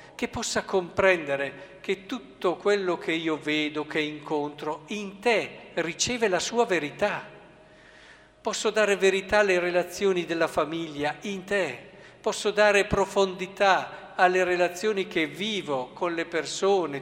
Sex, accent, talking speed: male, native, 125 wpm